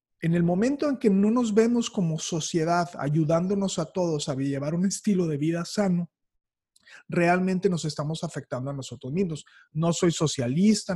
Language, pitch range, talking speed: Spanish, 160-220 Hz, 165 wpm